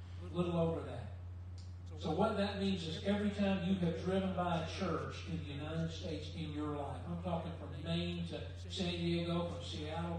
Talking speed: 190 wpm